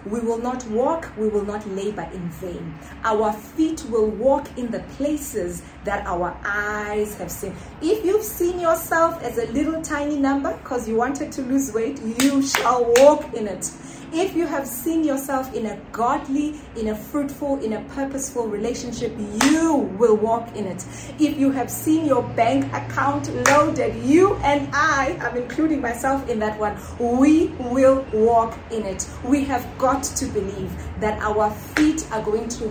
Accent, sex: South African, female